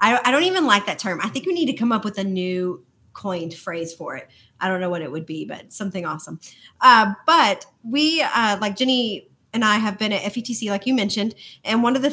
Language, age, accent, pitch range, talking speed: English, 30-49, American, 180-230 Hz, 240 wpm